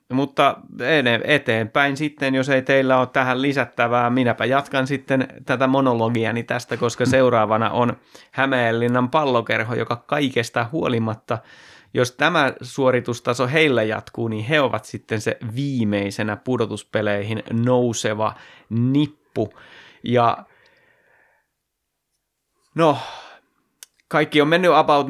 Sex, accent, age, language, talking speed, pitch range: male, native, 30-49, Finnish, 105 wpm, 115-135 Hz